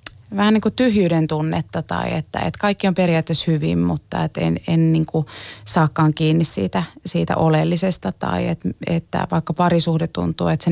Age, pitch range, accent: 30-49, 150-180 Hz, native